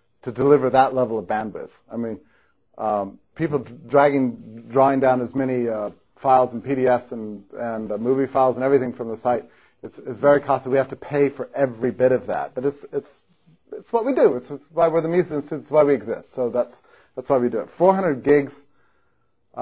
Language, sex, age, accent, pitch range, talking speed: English, male, 30-49, American, 125-140 Hz, 215 wpm